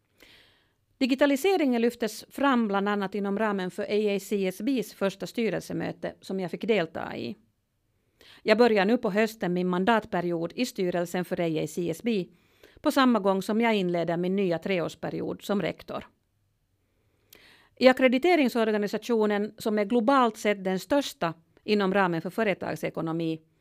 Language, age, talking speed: Swedish, 40-59, 125 wpm